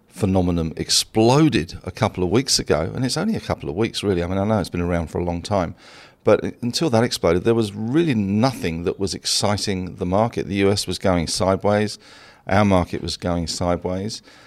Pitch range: 90-110 Hz